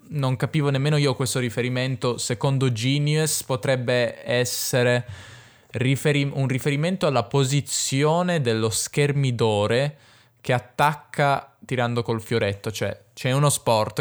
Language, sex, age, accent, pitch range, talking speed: Italian, male, 20-39, native, 110-135 Hz, 110 wpm